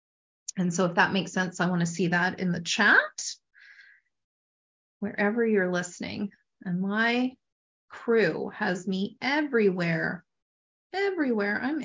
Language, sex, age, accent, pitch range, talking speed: English, female, 30-49, American, 190-235 Hz, 125 wpm